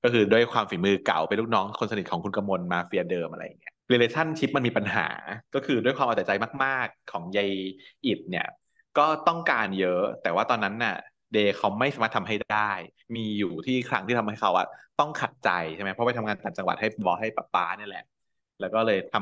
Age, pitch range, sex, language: 20-39, 100-125 Hz, male, Thai